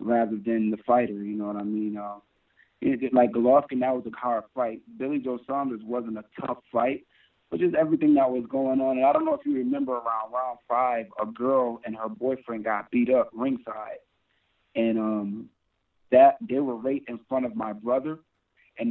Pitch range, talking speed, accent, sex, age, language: 115-135 Hz, 205 wpm, American, male, 30-49, English